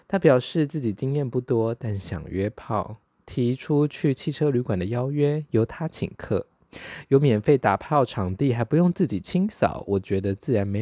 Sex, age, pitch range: male, 20-39, 105-150 Hz